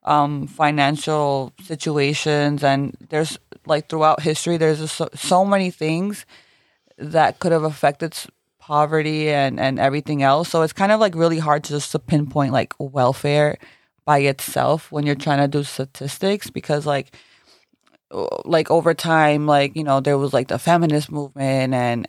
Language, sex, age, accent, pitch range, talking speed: English, female, 20-39, American, 140-160 Hz, 160 wpm